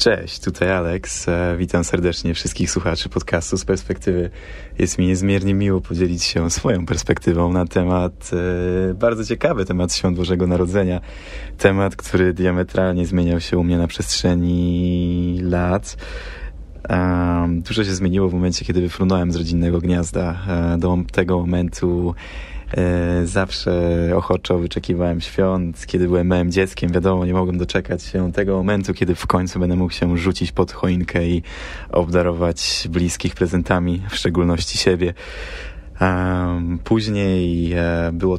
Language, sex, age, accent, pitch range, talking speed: Polish, male, 20-39, native, 85-95 Hz, 130 wpm